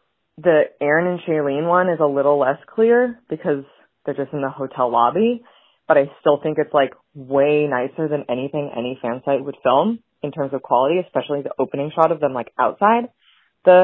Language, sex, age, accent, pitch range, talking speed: English, female, 20-39, American, 135-185 Hz, 195 wpm